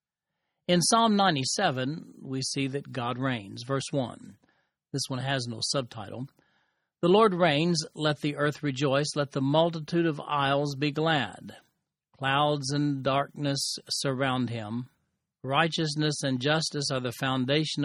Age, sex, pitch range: 50-69, male, 135-165 Hz